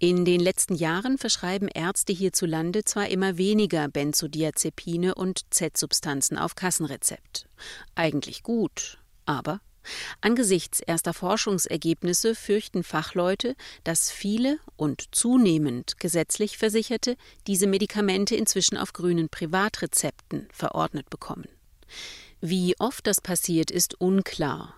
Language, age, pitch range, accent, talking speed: German, 40-59, 160-205 Hz, German, 105 wpm